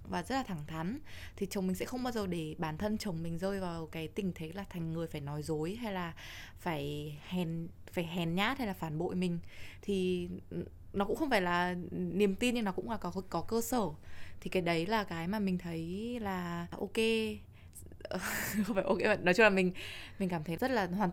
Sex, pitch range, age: female, 170-215 Hz, 20-39